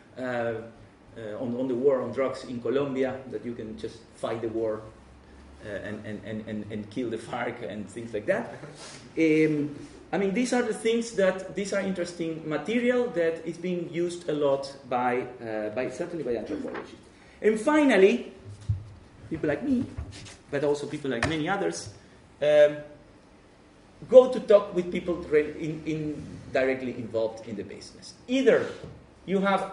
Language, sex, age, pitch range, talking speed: English, male, 30-49, 130-195 Hz, 160 wpm